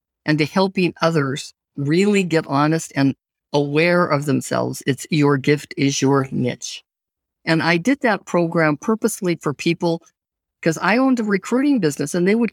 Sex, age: female, 50-69